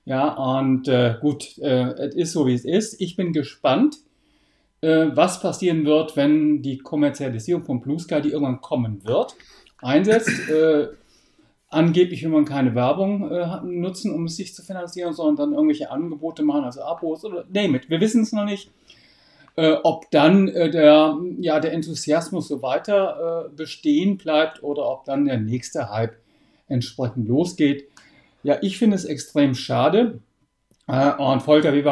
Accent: German